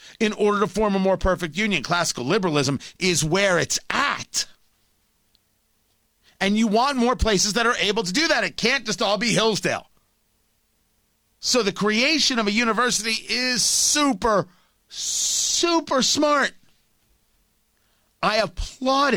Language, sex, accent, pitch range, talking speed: English, male, American, 145-225 Hz, 135 wpm